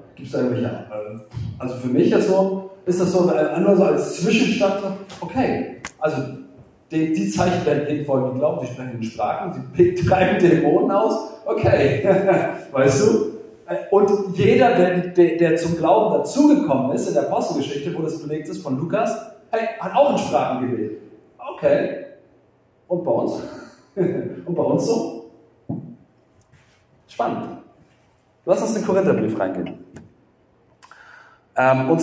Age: 40-59